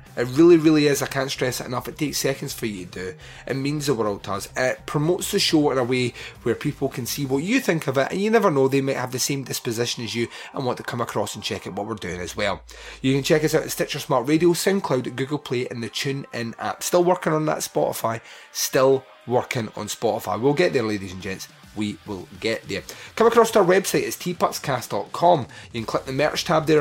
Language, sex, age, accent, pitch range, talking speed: English, male, 30-49, British, 115-155 Hz, 250 wpm